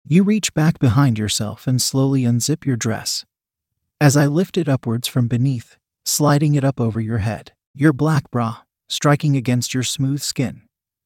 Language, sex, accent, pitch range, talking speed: English, male, American, 120-150 Hz, 170 wpm